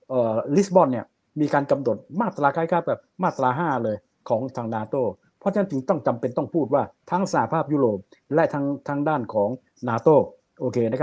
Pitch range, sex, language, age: 125-165 Hz, male, Thai, 60-79